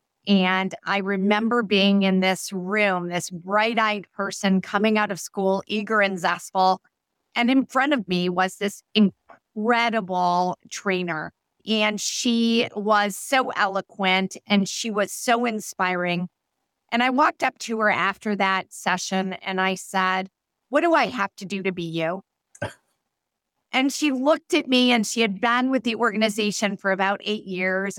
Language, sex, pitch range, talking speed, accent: English, female, 185-225 Hz, 160 wpm, American